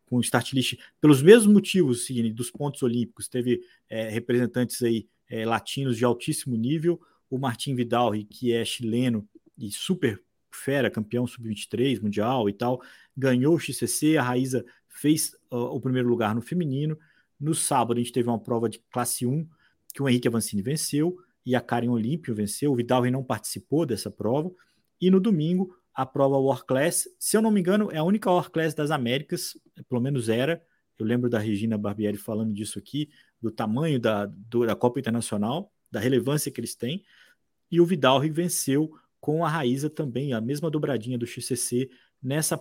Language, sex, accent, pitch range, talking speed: Portuguese, male, Brazilian, 120-155 Hz, 170 wpm